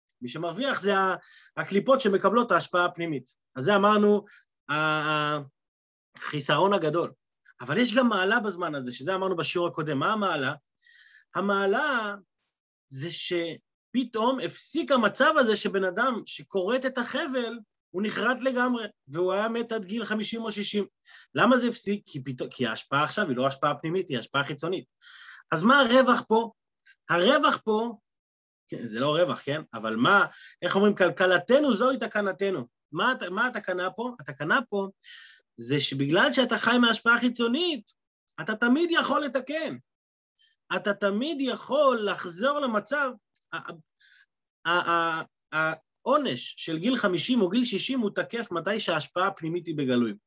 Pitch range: 165-245 Hz